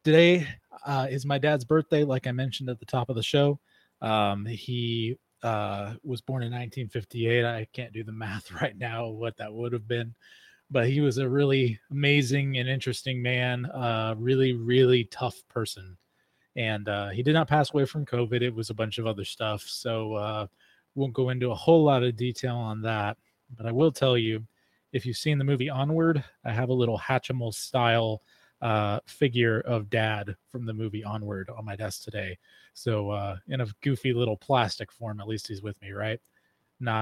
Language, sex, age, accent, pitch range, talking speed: English, male, 20-39, American, 110-135 Hz, 195 wpm